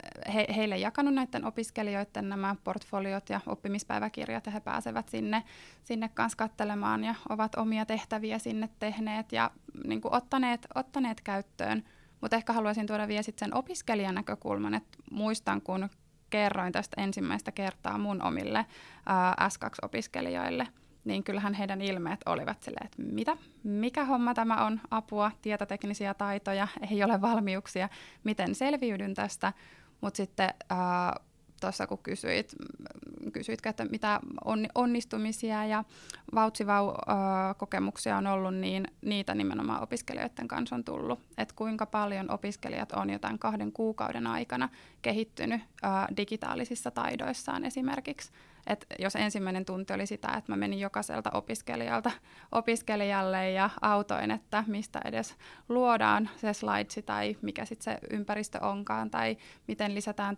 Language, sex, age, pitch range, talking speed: Finnish, female, 20-39, 190-220 Hz, 130 wpm